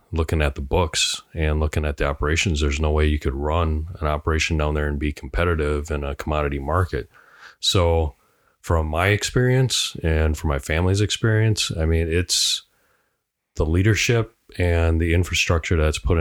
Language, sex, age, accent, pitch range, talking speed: English, male, 30-49, American, 75-85 Hz, 165 wpm